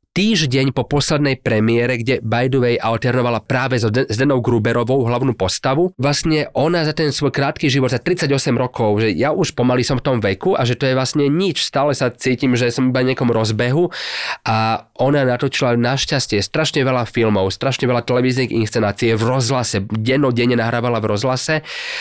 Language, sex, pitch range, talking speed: Slovak, male, 115-135 Hz, 180 wpm